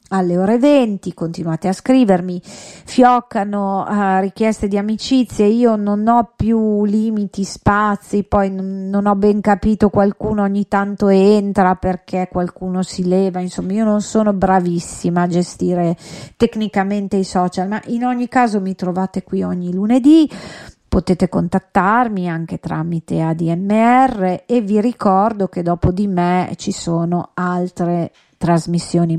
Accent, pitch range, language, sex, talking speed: native, 175-210 Hz, Italian, female, 130 wpm